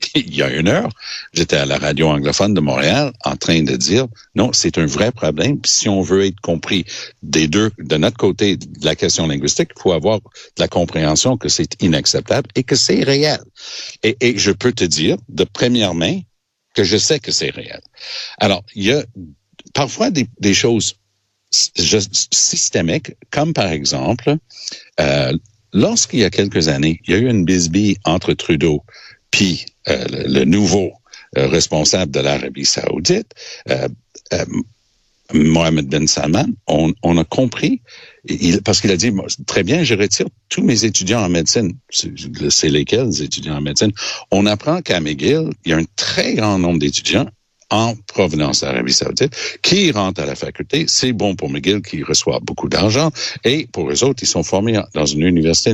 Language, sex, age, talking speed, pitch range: French, male, 60-79, 180 wpm, 80-115 Hz